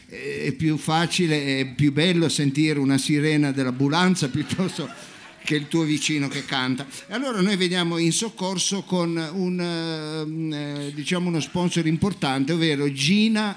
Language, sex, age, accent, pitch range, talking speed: Italian, male, 50-69, native, 145-190 Hz, 135 wpm